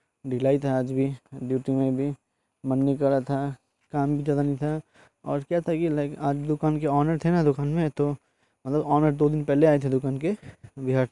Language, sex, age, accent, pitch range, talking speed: Hindi, male, 20-39, native, 130-145 Hz, 215 wpm